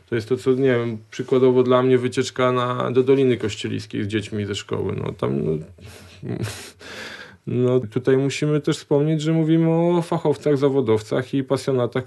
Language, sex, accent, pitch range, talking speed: Polish, male, native, 110-130 Hz, 165 wpm